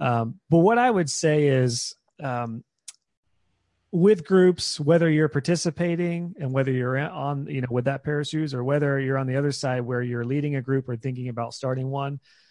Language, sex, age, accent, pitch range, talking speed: English, male, 30-49, American, 125-155 Hz, 195 wpm